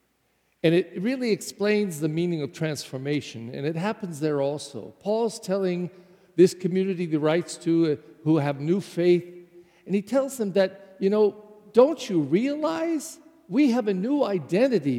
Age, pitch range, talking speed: 50-69, 160-235 Hz, 160 wpm